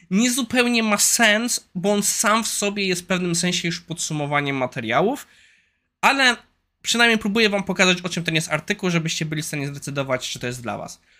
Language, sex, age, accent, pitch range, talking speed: Polish, male, 20-39, native, 140-190 Hz, 195 wpm